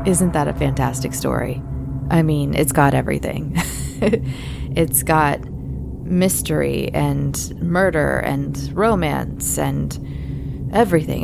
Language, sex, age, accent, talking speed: English, female, 20-39, American, 100 wpm